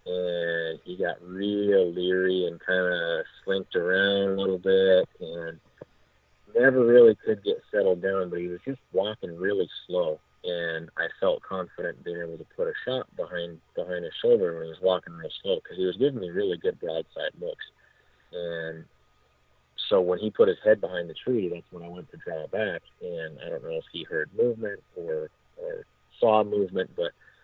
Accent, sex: American, male